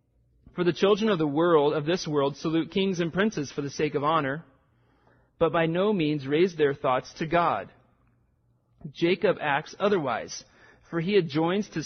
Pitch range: 135-165 Hz